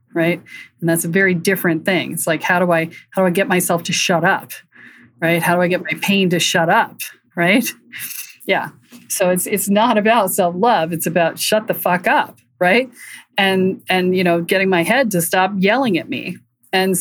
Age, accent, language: 40-59, American, English